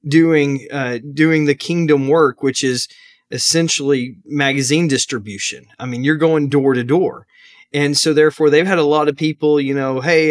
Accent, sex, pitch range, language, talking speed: American, male, 135-160 Hz, English, 175 wpm